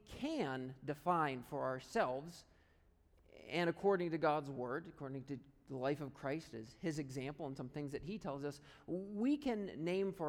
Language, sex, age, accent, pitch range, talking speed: English, male, 40-59, American, 150-200 Hz, 170 wpm